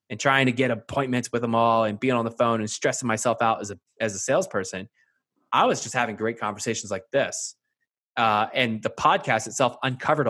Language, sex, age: English, male, 20-39